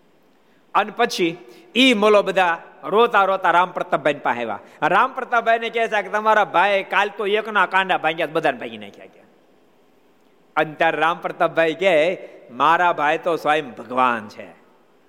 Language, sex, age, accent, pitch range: Gujarati, male, 50-69, native, 160-235 Hz